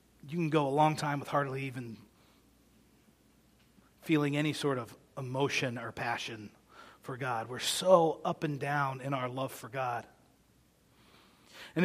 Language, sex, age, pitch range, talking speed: English, male, 40-59, 150-185 Hz, 145 wpm